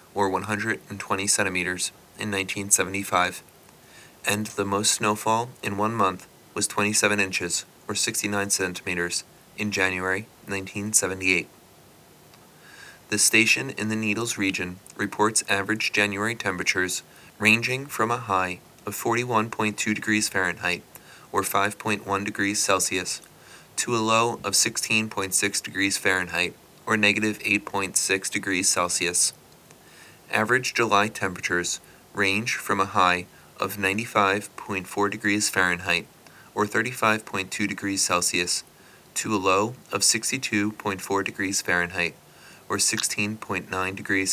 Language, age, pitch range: English, 20-39, 95-105 Hz